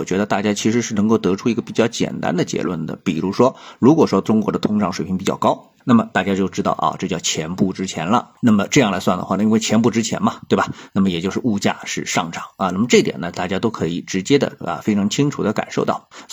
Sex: male